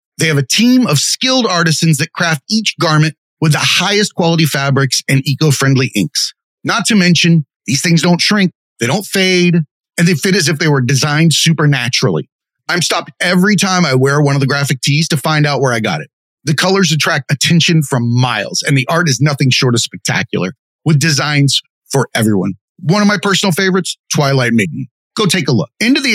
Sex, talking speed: male, 200 wpm